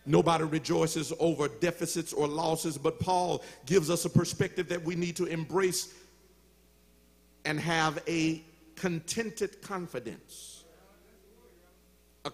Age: 50-69